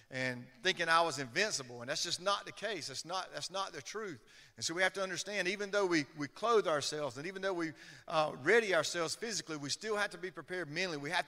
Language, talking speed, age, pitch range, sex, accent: English, 245 wpm, 40-59, 135-185 Hz, male, American